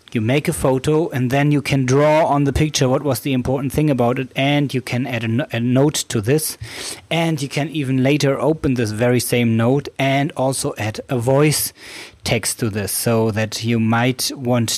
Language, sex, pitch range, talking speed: English, male, 110-135 Hz, 205 wpm